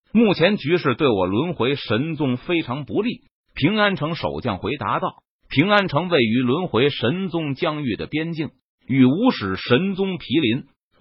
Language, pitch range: Chinese, 120-180 Hz